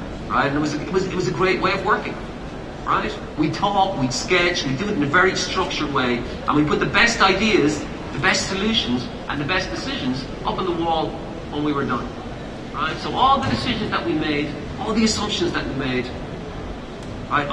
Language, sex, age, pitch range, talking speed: English, male, 40-59, 125-180 Hz, 220 wpm